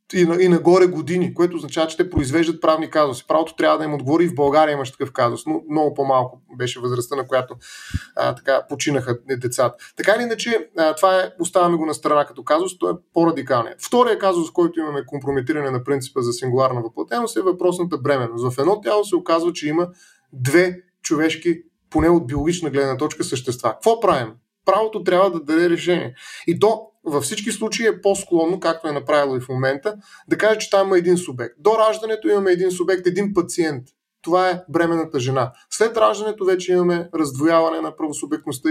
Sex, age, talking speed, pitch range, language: male, 30-49, 190 wpm, 150-180 Hz, Bulgarian